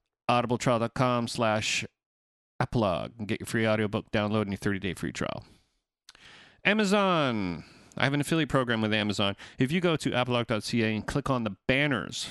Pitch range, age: 110-150 Hz, 40-59